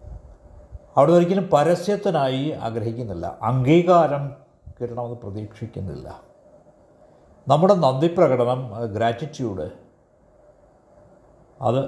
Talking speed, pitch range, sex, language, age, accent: 55 wpm, 115-175 Hz, male, Malayalam, 60-79, native